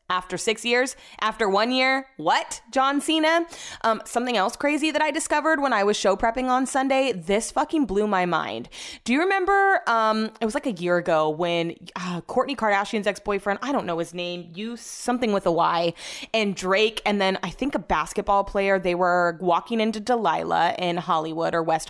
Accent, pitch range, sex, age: American, 180-220 Hz, female, 20-39